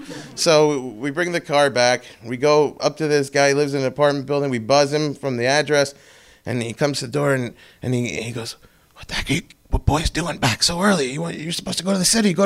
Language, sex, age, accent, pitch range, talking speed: English, male, 30-49, American, 125-200 Hz, 260 wpm